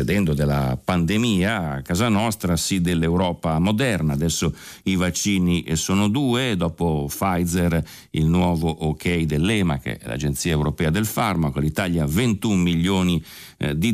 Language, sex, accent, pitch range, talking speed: Italian, male, native, 80-100 Hz, 130 wpm